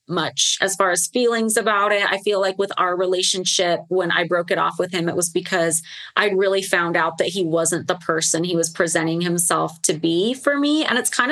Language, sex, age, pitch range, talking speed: English, female, 30-49, 170-215 Hz, 230 wpm